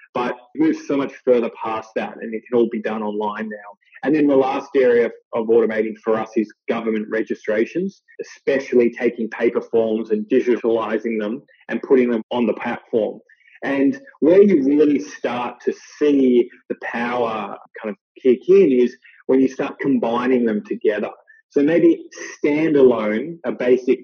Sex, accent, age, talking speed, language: male, Australian, 20-39, 160 wpm, English